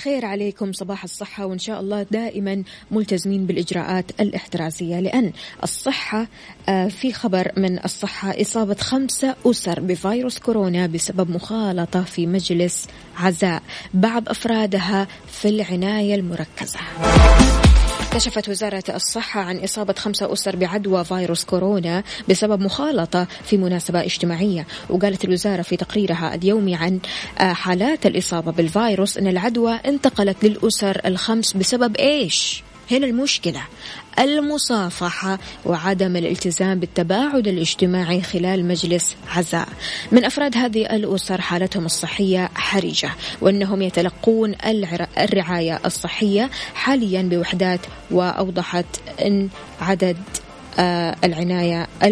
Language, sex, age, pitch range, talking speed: Arabic, female, 20-39, 180-210 Hz, 105 wpm